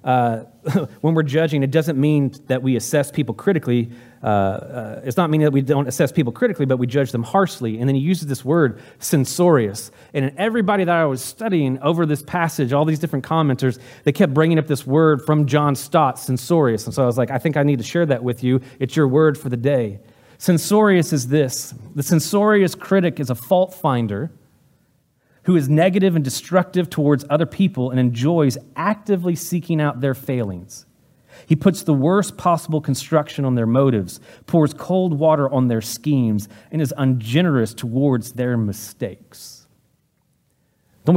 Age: 30-49